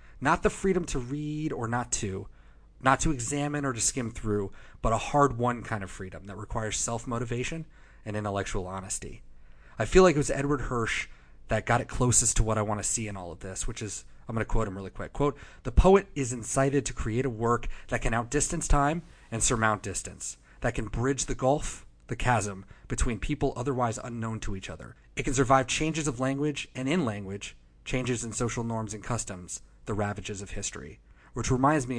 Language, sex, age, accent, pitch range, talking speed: English, male, 30-49, American, 100-130 Hz, 205 wpm